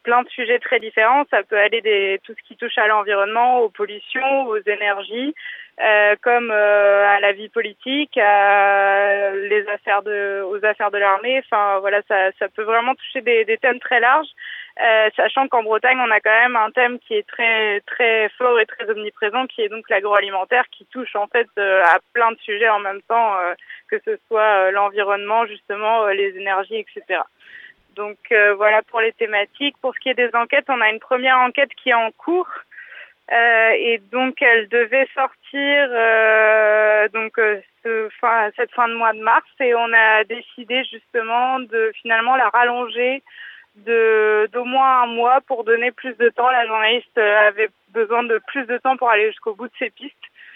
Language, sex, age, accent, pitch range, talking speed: French, female, 20-39, French, 210-250 Hz, 195 wpm